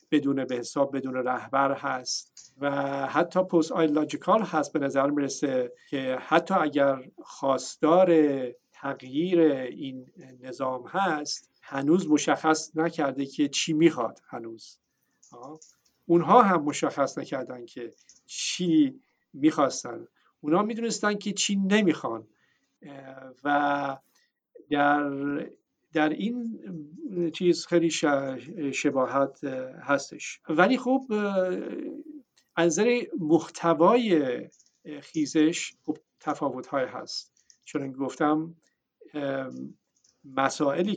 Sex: male